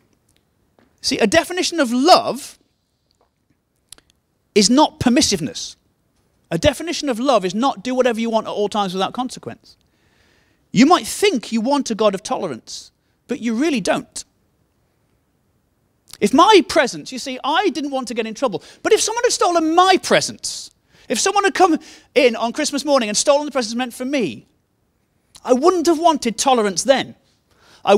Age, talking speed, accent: 30-49, 165 wpm, British